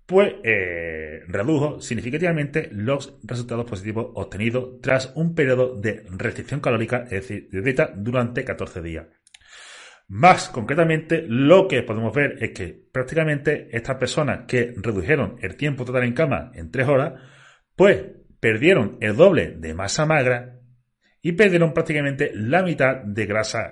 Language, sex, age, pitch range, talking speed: Spanish, male, 30-49, 100-155 Hz, 140 wpm